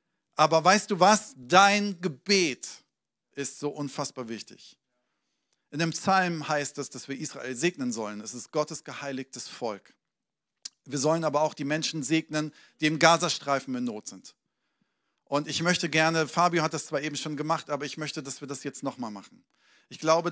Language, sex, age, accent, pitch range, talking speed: German, male, 40-59, German, 140-165 Hz, 175 wpm